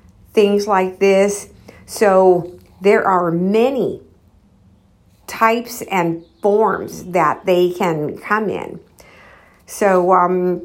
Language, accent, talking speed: English, American, 95 wpm